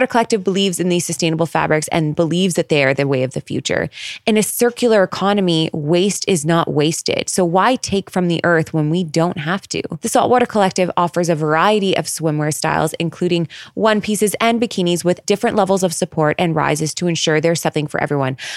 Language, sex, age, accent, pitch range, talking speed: English, female, 20-39, American, 155-190 Hz, 200 wpm